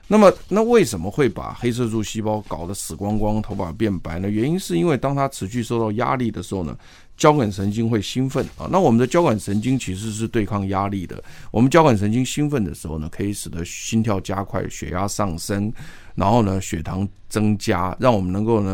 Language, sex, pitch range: Chinese, male, 95-115 Hz